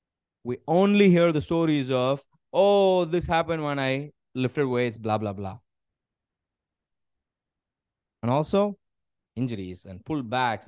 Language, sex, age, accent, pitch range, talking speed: English, male, 20-39, Indian, 110-155 Hz, 120 wpm